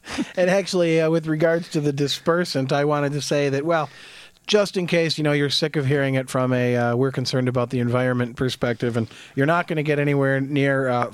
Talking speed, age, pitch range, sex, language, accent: 235 wpm, 40-59, 130-160 Hz, male, English, American